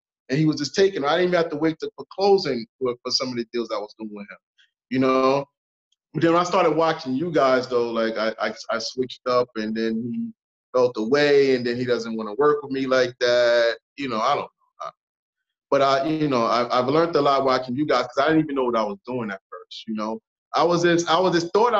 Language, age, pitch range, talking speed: English, 30-49, 130-180 Hz, 260 wpm